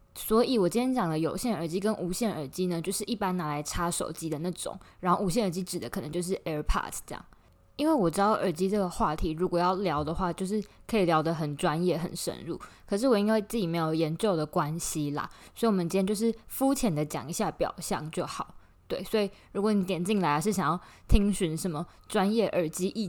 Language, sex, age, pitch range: Chinese, female, 20-39, 165-210 Hz